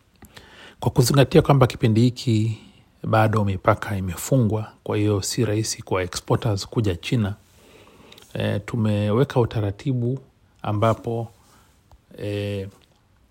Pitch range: 95-115 Hz